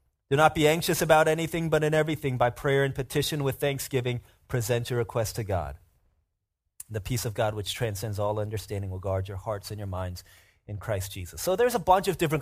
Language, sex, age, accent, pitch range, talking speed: English, male, 30-49, American, 105-155 Hz, 215 wpm